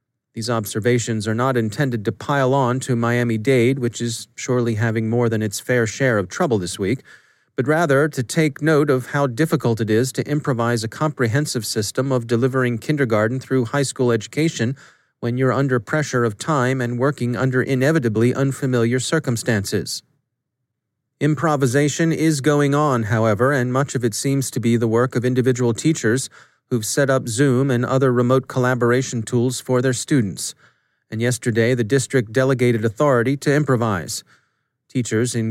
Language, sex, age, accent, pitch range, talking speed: English, male, 30-49, American, 120-135 Hz, 160 wpm